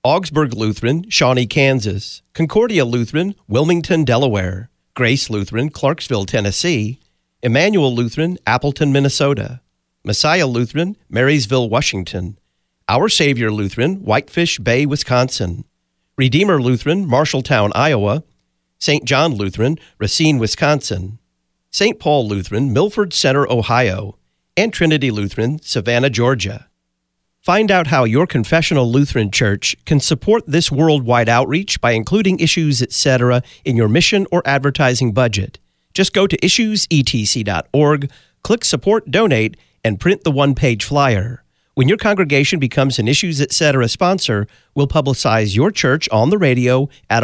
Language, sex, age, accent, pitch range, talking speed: English, male, 50-69, American, 110-155 Hz, 120 wpm